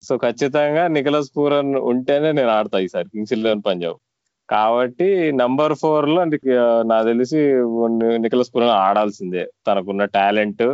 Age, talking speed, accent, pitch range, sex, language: 20-39, 130 wpm, native, 100-125 Hz, male, Telugu